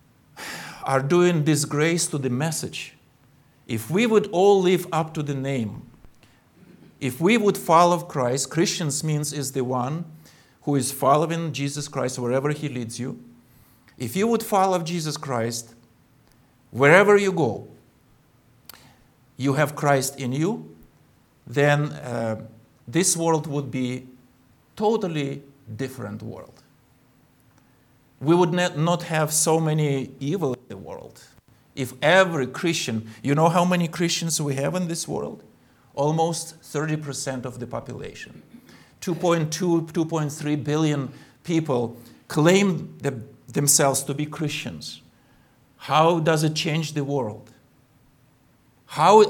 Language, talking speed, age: English, 125 wpm, 50-69